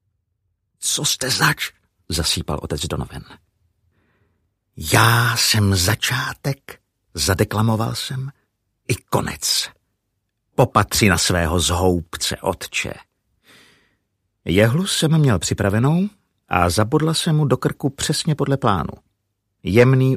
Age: 50-69